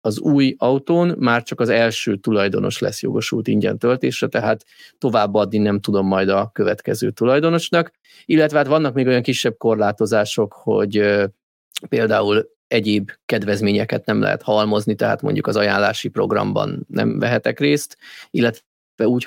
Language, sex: Hungarian, male